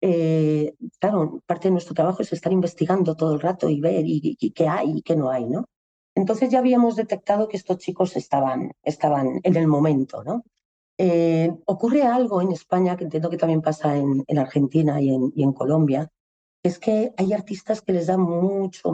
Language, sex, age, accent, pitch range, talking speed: Spanish, female, 40-59, Spanish, 155-195 Hz, 200 wpm